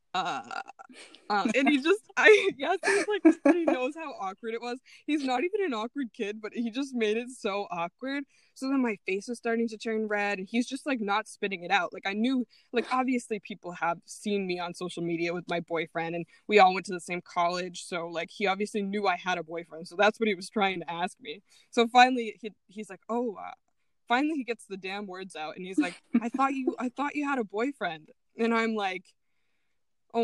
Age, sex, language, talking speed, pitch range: 20-39, female, English, 230 wpm, 185-240 Hz